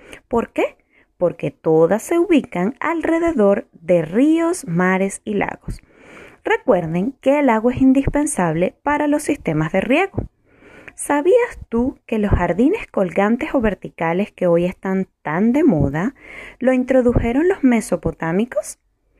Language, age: Spanish, 20-39